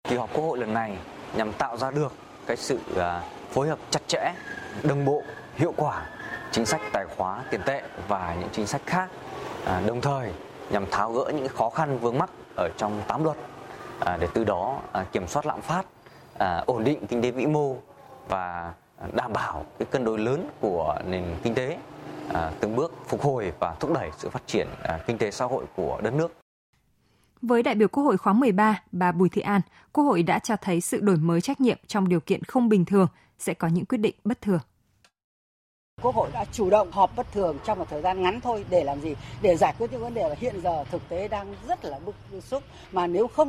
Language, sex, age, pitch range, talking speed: Vietnamese, male, 20-39, 145-225 Hz, 215 wpm